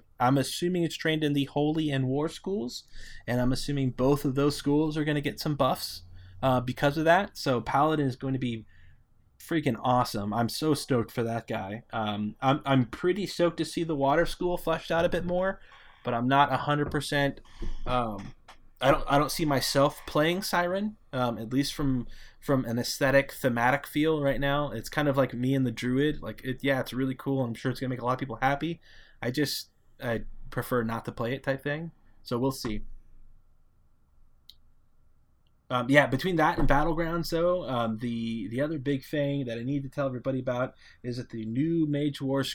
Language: English